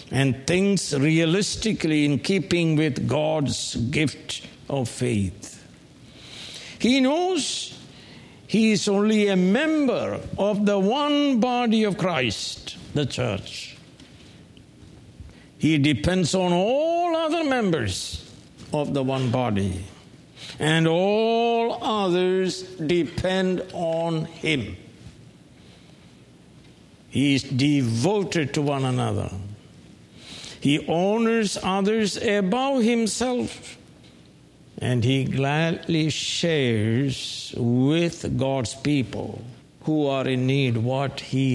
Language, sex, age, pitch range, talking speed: English, male, 60-79, 130-210 Hz, 95 wpm